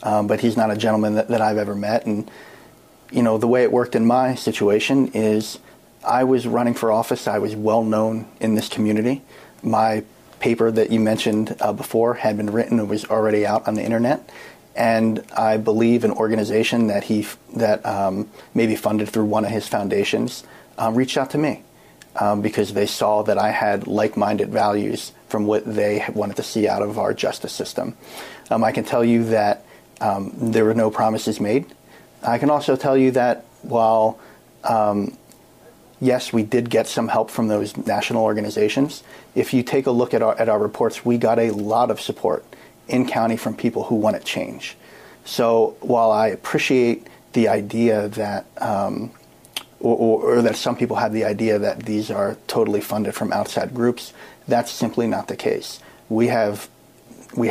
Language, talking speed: English, 185 wpm